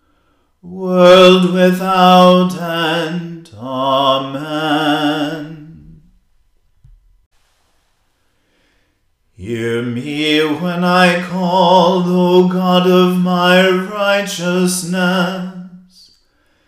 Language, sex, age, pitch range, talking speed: English, male, 40-59, 175-185 Hz, 50 wpm